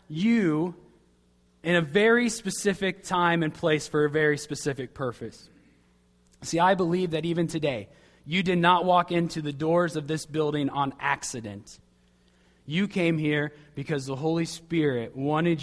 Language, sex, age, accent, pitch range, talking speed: English, male, 20-39, American, 135-185 Hz, 150 wpm